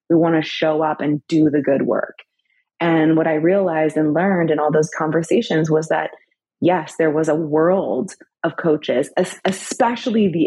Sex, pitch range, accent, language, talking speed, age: female, 155-180 Hz, American, English, 180 wpm, 20-39